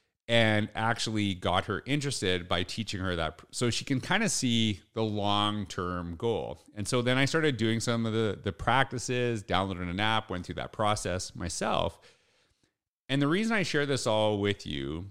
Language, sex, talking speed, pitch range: English, male, 185 wpm, 95-125 Hz